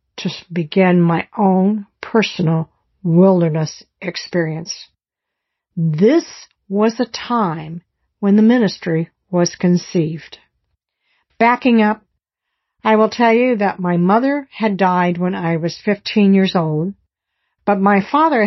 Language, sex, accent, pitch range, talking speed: English, female, American, 175-225 Hz, 115 wpm